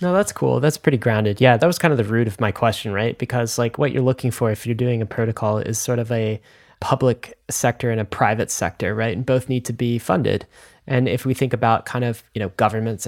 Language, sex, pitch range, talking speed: English, male, 115-130 Hz, 250 wpm